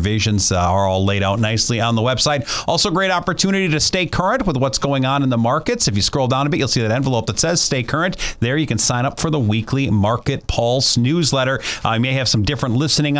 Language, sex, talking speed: English, male, 245 wpm